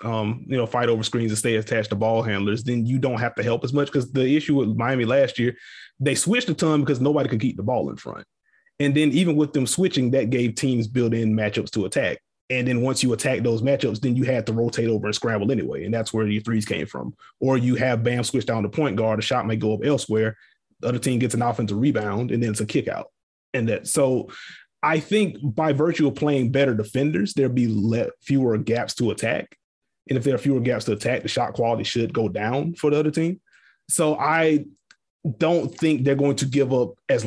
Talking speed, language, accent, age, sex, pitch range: 245 wpm, English, American, 30-49, male, 110-145 Hz